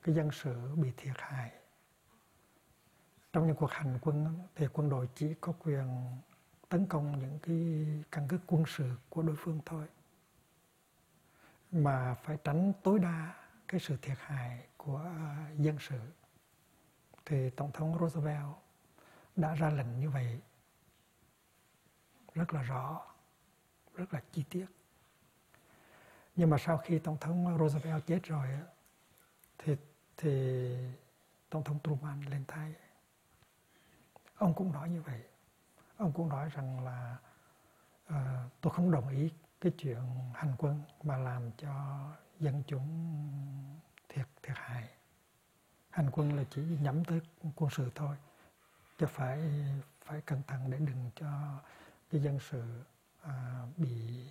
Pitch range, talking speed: 135-160 Hz, 135 wpm